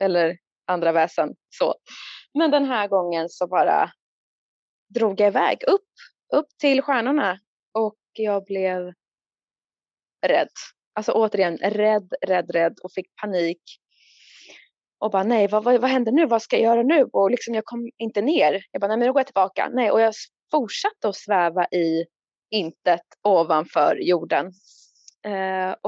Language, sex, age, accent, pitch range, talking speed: Swedish, female, 20-39, native, 190-245 Hz, 155 wpm